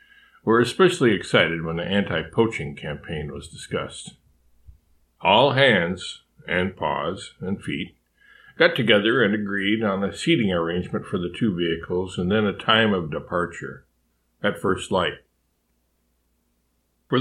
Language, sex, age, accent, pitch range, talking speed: English, male, 50-69, American, 80-120 Hz, 130 wpm